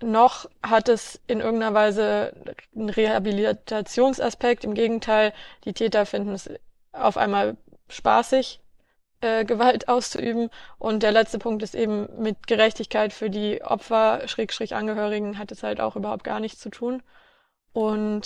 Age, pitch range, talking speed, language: 20-39, 215-235 Hz, 135 wpm, German